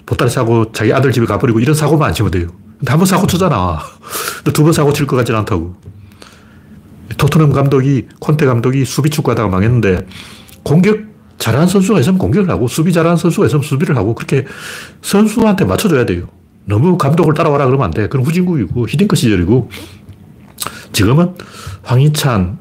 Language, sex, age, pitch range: Korean, male, 40-59, 105-150 Hz